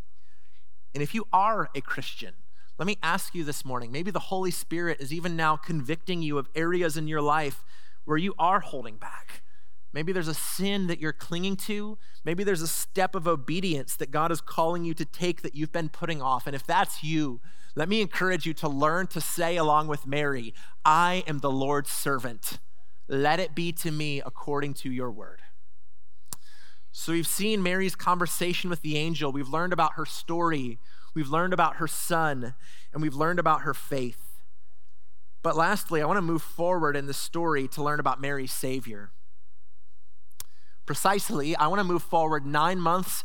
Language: English